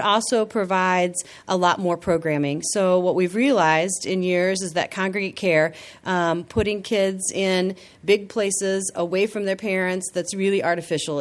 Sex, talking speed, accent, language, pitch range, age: female, 155 wpm, American, English, 165-195 Hz, 40-59